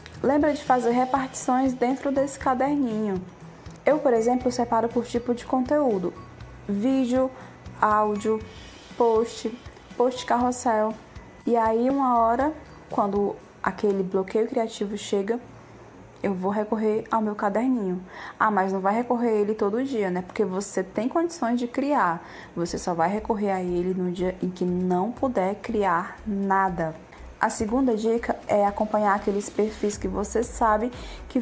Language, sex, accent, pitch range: Portuguese, female, Brazilian, 210-260 Hz